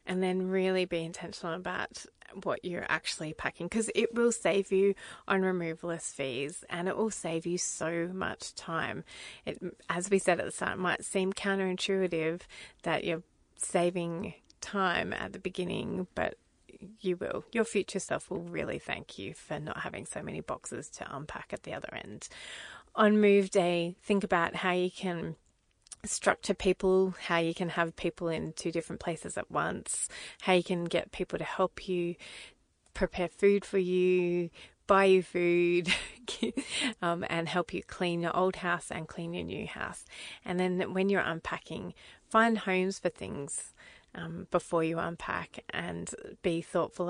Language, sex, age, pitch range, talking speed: English, female, 30-49, 170-190 Hz, 165 wpm